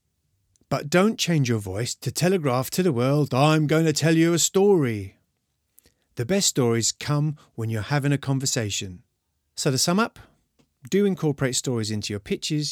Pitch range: 110-155 Hz